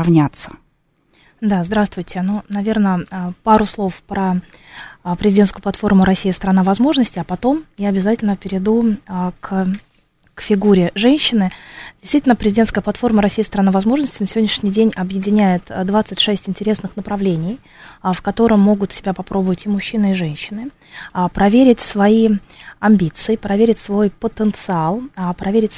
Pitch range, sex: 190-220 Hz, female